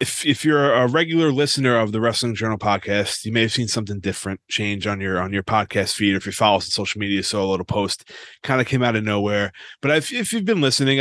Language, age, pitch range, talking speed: English, 30-49, 100-120 Hz, 260 wpm